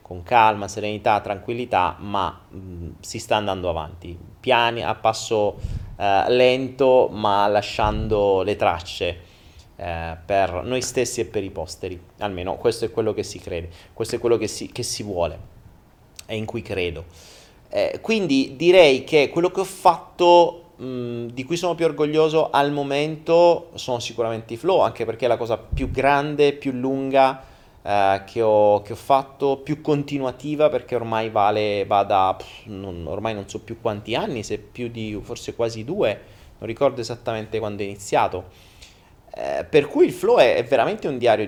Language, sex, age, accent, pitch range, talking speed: Italian, male, 30-49, native, 100-135 Hz, 160 wpm